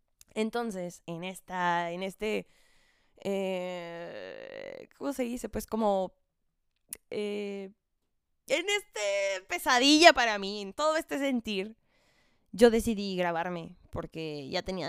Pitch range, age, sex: 185-260 Hz, 20-39, female